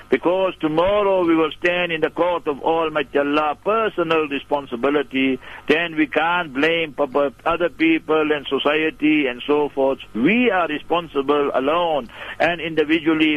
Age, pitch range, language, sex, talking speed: 60-79, 145-165 Hz, English, male, 135 wpm